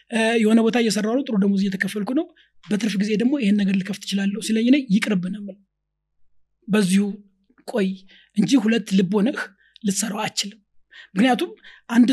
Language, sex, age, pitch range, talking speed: English, male, 30-49, 205-265 Hz, 175 wpm